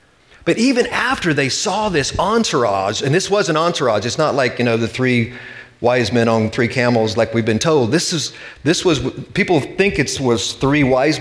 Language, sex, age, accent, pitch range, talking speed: English, male, 40-59, American, 120-155 Hz, 215 wpm